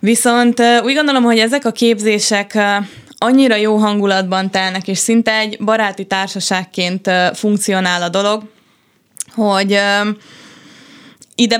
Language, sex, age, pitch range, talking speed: Hungarian, female, 20-39, 190-225 Hz, 110 wpm